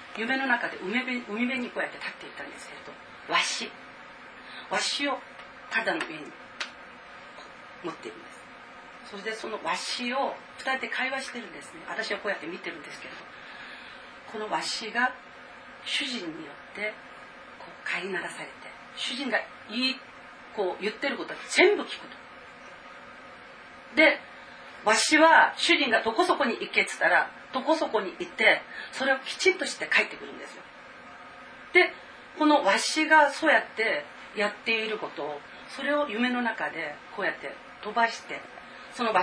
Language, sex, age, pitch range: Japanese, female, 40-59, 215-290 Hz